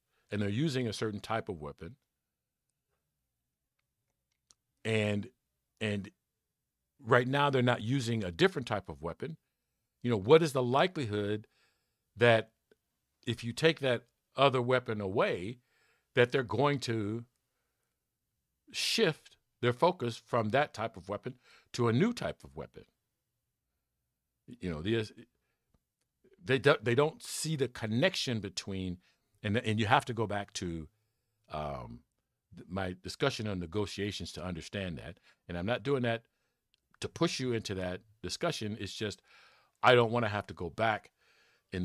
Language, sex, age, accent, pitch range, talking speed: English, male, 50-69, American, 95-125 Hz, 140 wpm